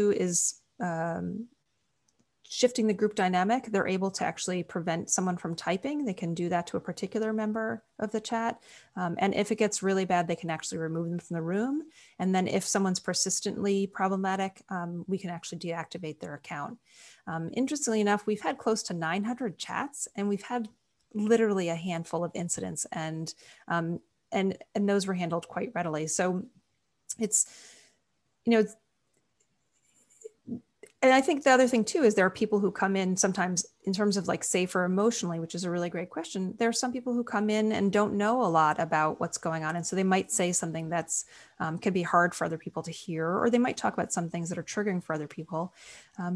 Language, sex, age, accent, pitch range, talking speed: English, female, 30-49, American, 170-215 Hz, 205 wpm